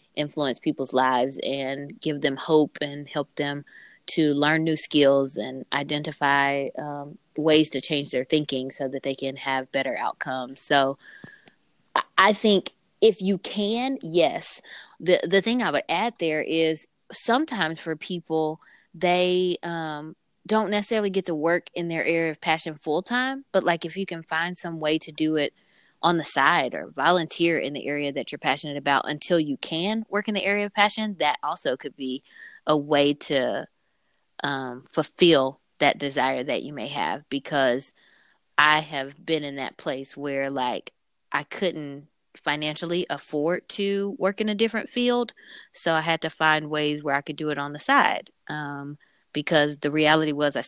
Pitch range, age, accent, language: 140-175 Hz, 20-39, American, English